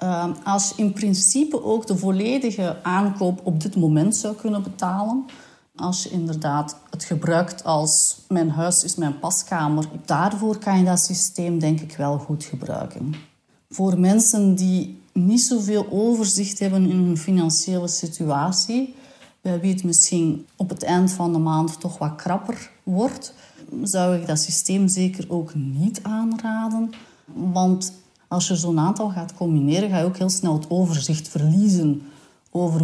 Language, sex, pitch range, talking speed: Dutch, female, 160-195 Hz, 155 wpm